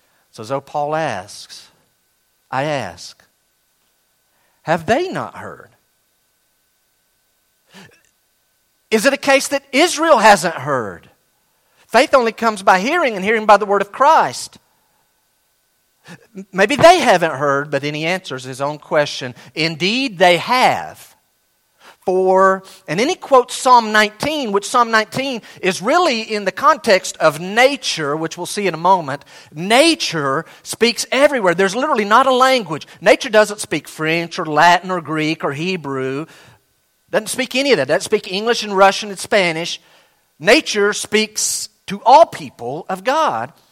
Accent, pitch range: American, 170-260 Hz